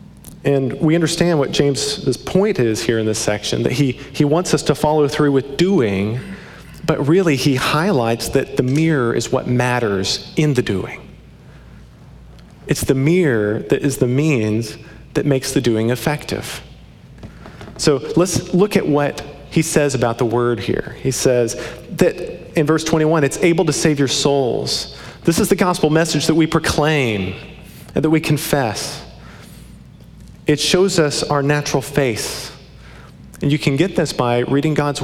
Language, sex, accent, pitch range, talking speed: English, male, American, 125-160 Hz, 165 wpm